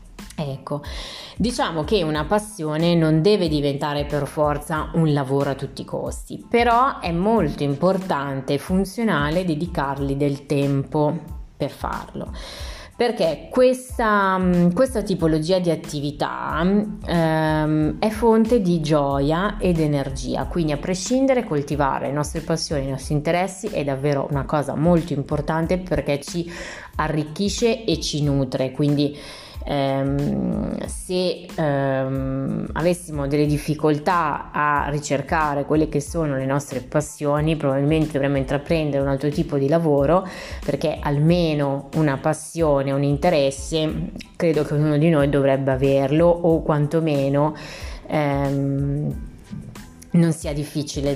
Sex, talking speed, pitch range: female, 120 wpm, 140-175 Hz